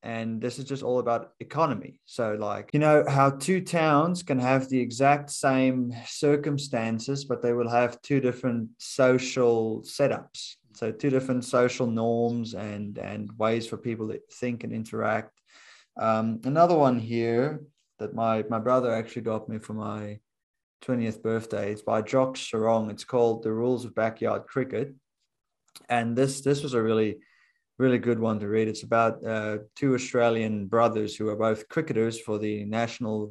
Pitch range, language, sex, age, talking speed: 110-125 Hz, English, male, 20-39, 165 wpm